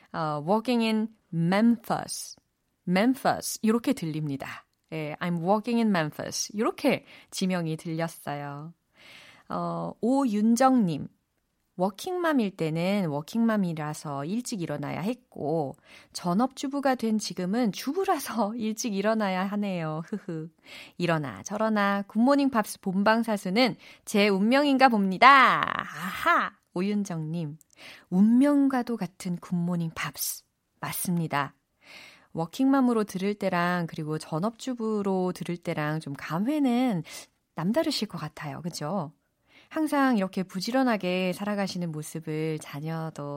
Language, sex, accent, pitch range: Korean, female, native, 165-235 Hz